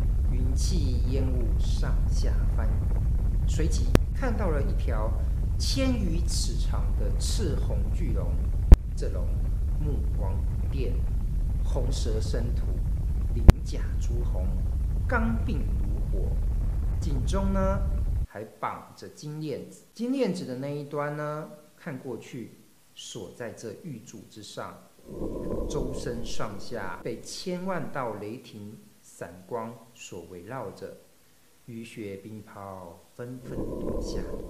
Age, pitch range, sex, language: 50-69, 85-115 Hz, male, Chinese